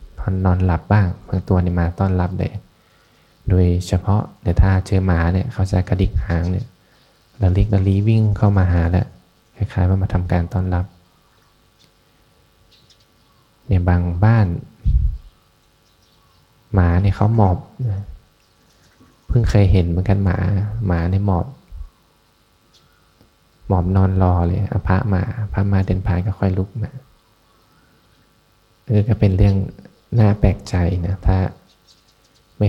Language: Thai